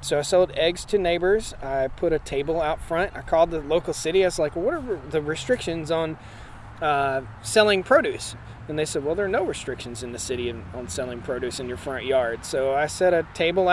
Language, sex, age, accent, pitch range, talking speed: English, male, 30-49, American, 135-180 Hz, 225 wpm